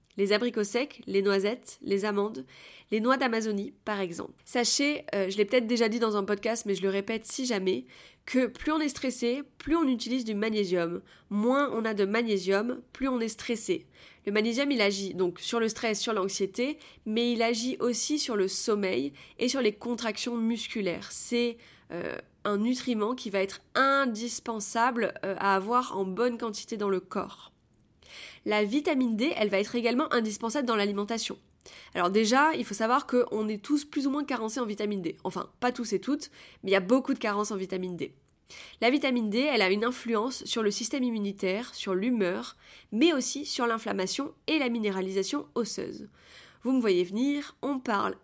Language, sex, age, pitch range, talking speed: French, female, 20-39, 200-255 Hz, 190 wpm